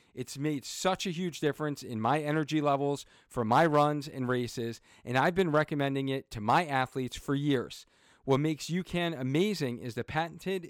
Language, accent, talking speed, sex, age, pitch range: English, American, 180 wpm, male, 40-59, 130-170 Hz